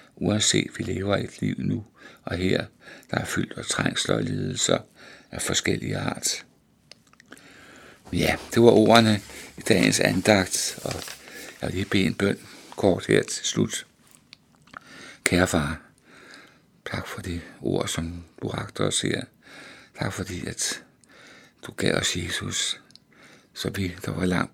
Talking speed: 145 wpm